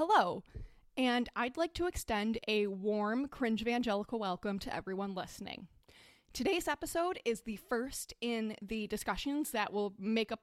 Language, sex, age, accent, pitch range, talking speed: English, female, 20-39, American, 210-260 Hz, 150 wpm